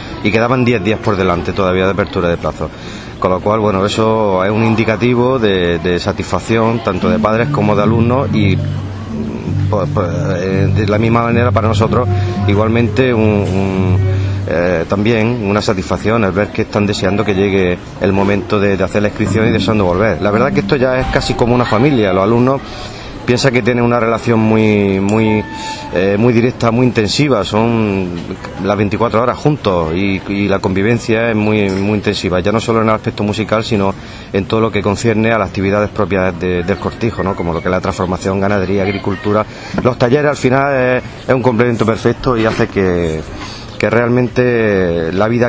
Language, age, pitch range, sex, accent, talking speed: Spanish, 30-49, 95-115 Hz, male, Spanish, 185 wpm